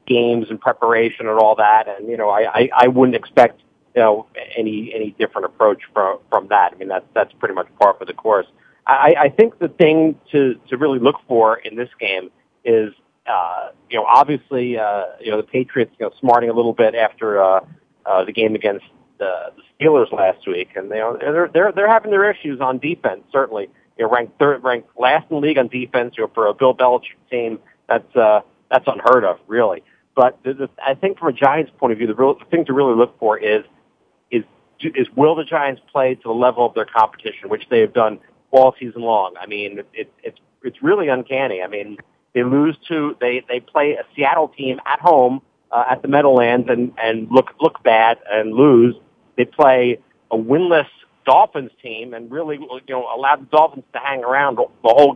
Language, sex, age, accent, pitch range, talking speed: English, male, 40-59, American, 115-150 Hz, 210 wpm